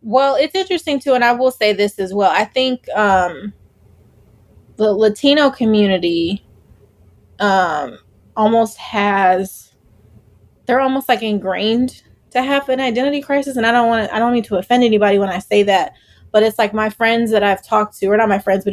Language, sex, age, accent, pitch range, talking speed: English, female, 20-39, American, 200-240 Hz, 185 wpm